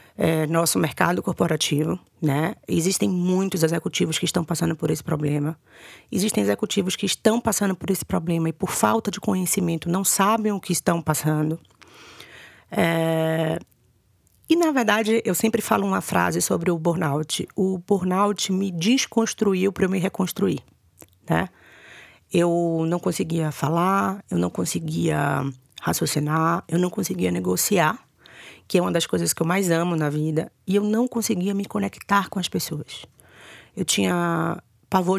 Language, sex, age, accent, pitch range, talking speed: Portuguese, female, 30-49, Brazilian, 155-195 Hz, 150 wpm